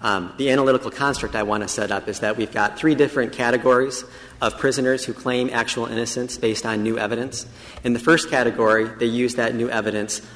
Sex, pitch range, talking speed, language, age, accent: male, 110-130 Hz, 205 wpm, English, 40-59, American